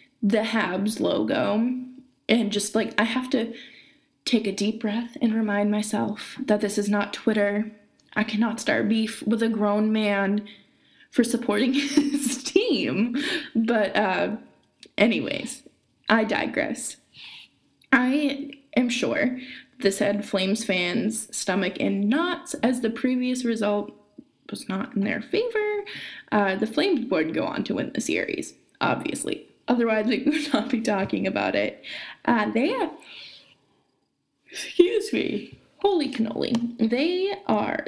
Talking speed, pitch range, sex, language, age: 135 wpm, 215-280 Hz, female, English, 20-39